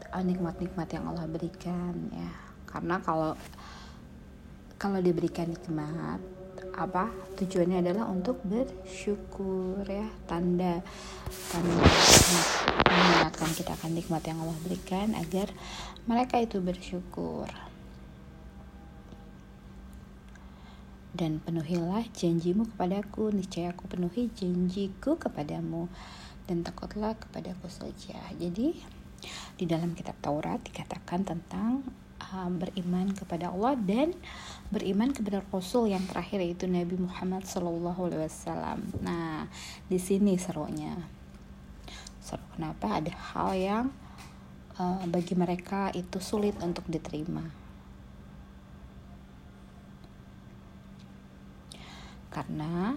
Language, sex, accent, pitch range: Indonesian, female, native, 155-195 Hz